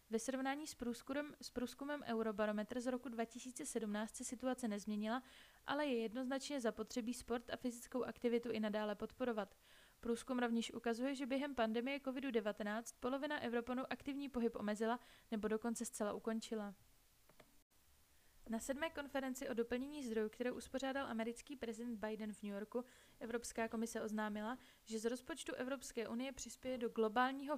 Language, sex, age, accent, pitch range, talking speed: Czech, female, 20-39, native, 220-255 Hz, 140 wpm